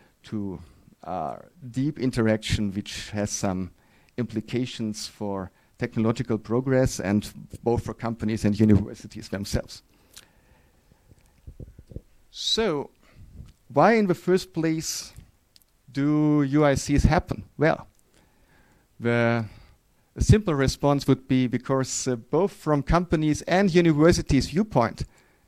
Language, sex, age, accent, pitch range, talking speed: English, male, 50-69, German, 110-145 Hz, 95 wpm